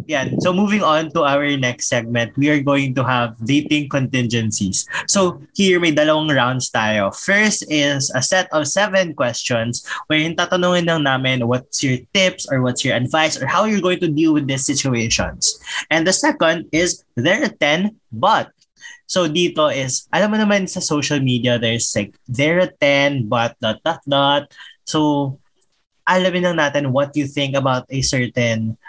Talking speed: 165 wpm